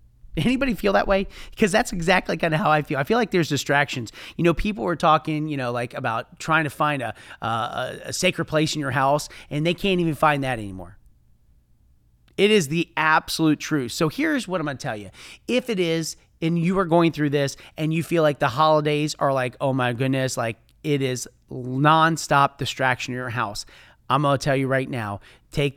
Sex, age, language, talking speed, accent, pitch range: male, 30-49, English, 215 wpm, American, 130-170 Hz